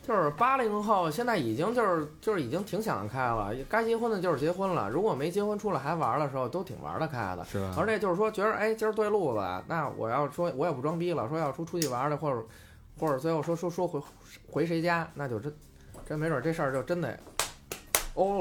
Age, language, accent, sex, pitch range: 20-39, Chinese, native, male, 110-175 Hz